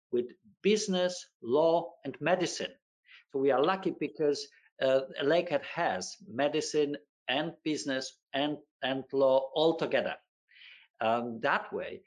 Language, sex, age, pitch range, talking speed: English, male, 50-69, 135-185 Hz, 120 wpm